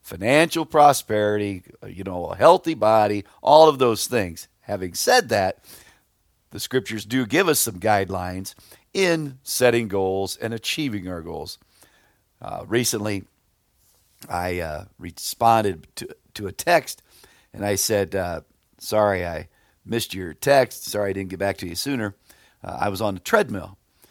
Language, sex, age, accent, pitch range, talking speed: English, male, 50-69, American, 100-125 Hz, 150 wpm